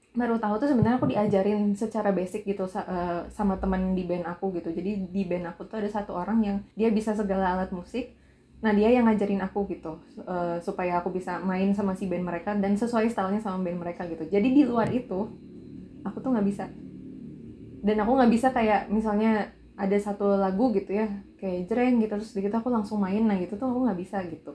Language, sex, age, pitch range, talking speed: Indonesian, female, 20-39, 190-230 Hz, 210 wpm